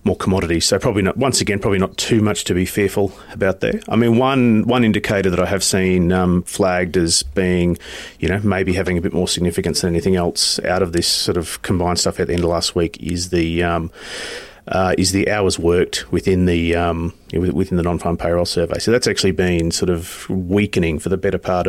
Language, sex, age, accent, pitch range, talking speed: English, male, 30-49, Australian, 85-95 Hz, 220 wpm